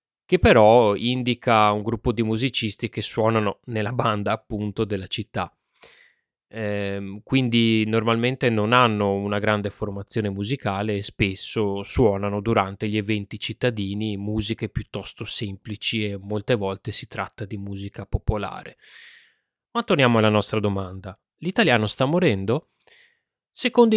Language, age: Italian, 20-39